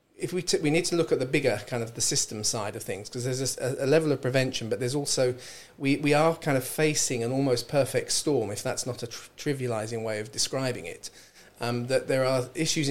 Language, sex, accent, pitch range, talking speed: English, male, British, 120-140 Hz, 240 wpm